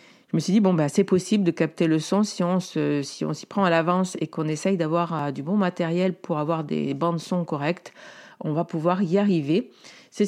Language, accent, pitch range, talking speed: French, French, 160-190 Hz, 240 wpm